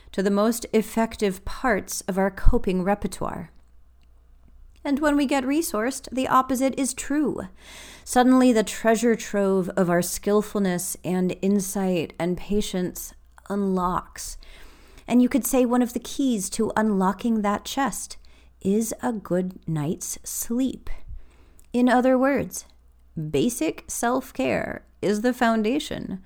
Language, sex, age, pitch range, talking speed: English, female, 40-59, 165-215 Hz, 125 wpm